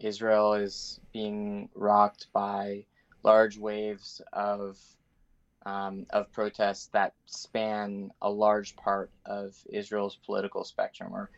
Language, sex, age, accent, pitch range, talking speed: English, male, 20-39, American, 100-110 Hz, 110 wpm